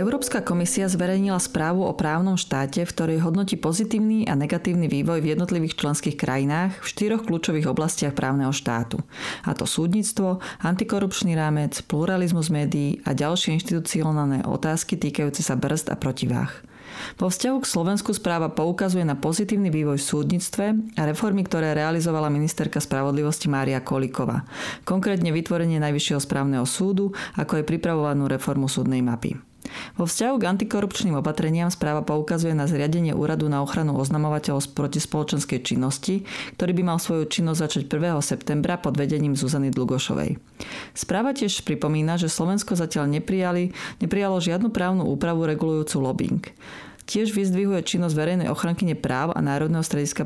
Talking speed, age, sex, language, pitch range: 145 wpm, 30-49, female, Slovak, 145-185 Hz